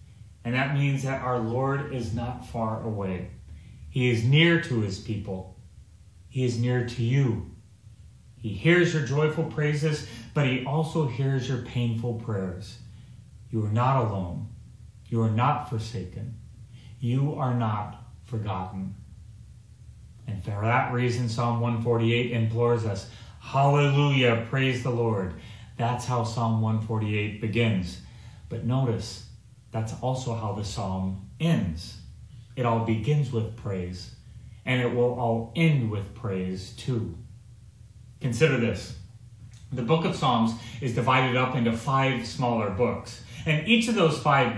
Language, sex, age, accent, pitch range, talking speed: English, male, 30-49, American, 110-130 Hz, 135 wpm